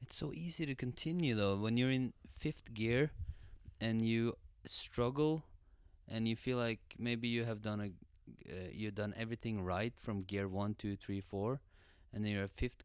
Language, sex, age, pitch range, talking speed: English, male, 20-39, 90-110 Hz, 180 wpm